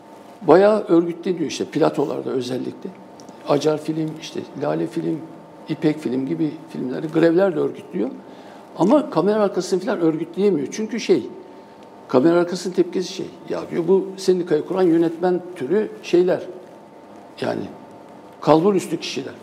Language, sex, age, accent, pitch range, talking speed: Turkish, male, 60-79, native, 160-195 Hz, 125 wpm